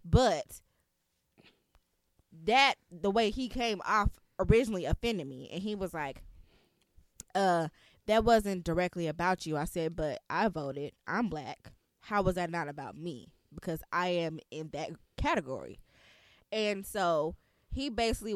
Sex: female